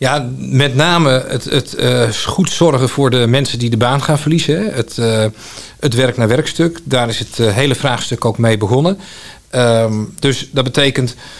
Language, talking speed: Dutch, 165 wpm